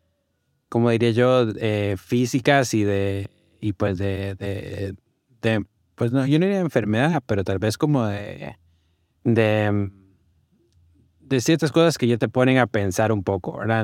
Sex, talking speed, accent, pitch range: male, 165 wpm, Mexican, 100-125 Hz